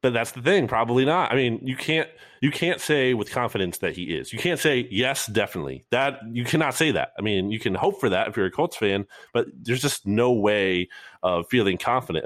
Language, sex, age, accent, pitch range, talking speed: English, male, 30-49, American, 100-125 Hz, 235 wpm